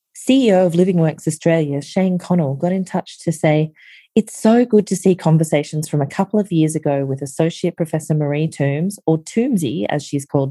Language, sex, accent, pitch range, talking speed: English, female, Australian, 140-180 Hz, 195 wpm